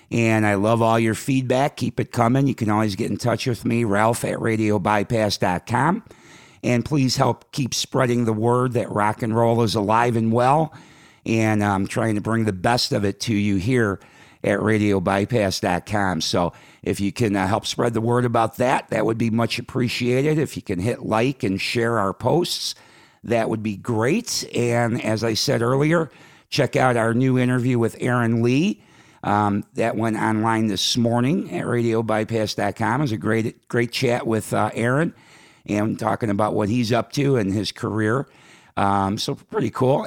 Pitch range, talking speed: 105-125 Hz, 180 wpm